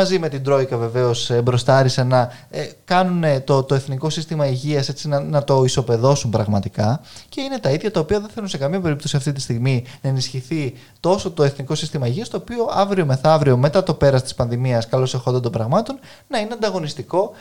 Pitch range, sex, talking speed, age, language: 130-190 Hz, male, 190 wpm, 20-39, Greek